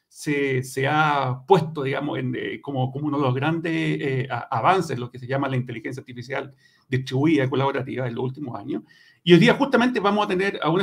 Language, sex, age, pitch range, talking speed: Spanish, male, 50-69, 135-160 Hz, 205 wpm